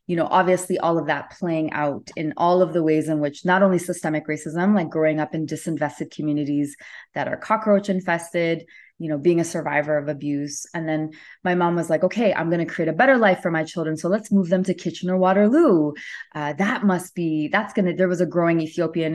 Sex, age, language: female, 20-39, English